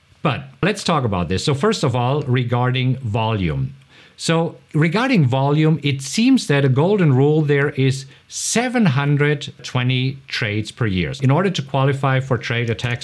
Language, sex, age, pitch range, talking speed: English, male, 50-69, 125-170 Hz, 150 wpm